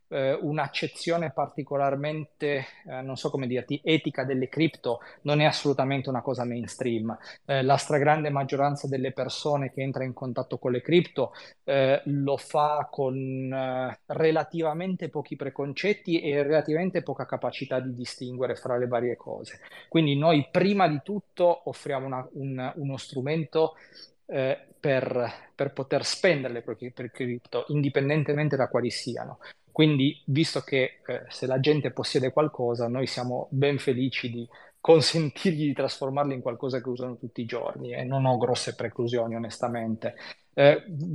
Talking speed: 150 wpm